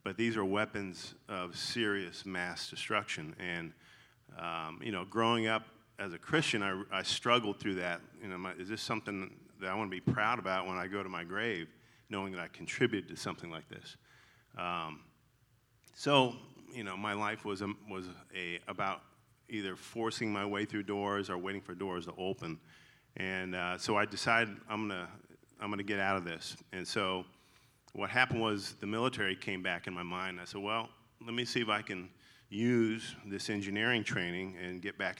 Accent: American